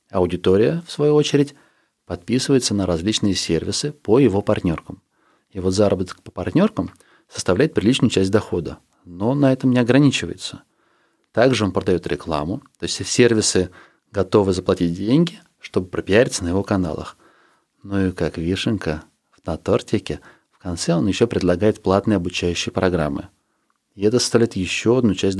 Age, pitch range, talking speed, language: 30-49, 95-130 Hz, 140 wpm, Russian